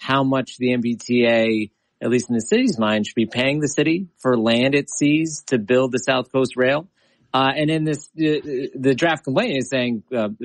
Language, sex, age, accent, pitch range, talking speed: English, male, 30-49, American, 115-145 Hz, 205 wpm